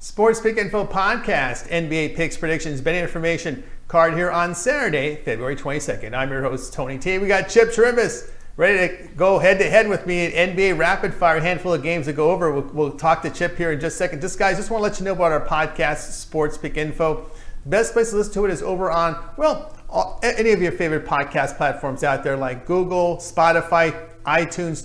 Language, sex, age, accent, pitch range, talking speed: English, male, 40-59, American, 150-175 Hz, 215 wpm